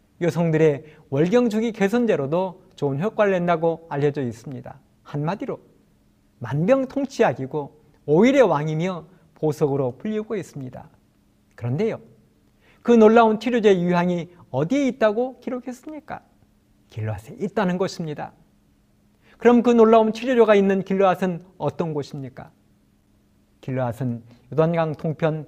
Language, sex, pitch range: Korean, male, 145-220 Hz